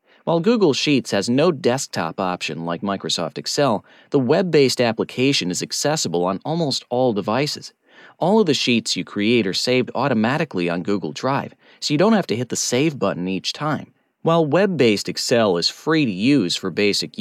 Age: 30-49